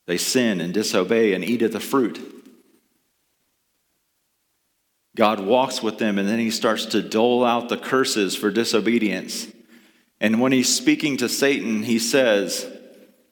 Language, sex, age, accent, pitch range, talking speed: English, male, 40-59, American, 110-150 Hz, 145 wpm